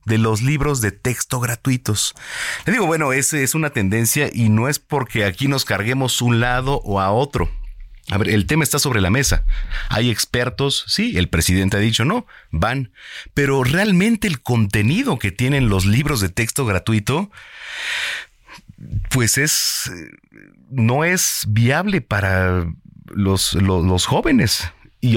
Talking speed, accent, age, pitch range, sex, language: 155 wpm, Mexican, 40-59, 100-145 Hz, male, Spanish